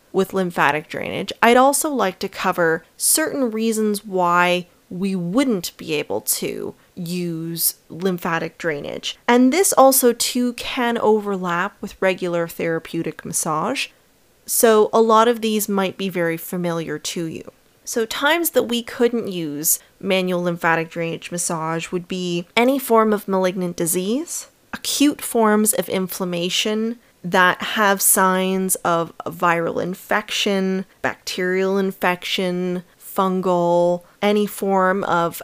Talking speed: 125 wpm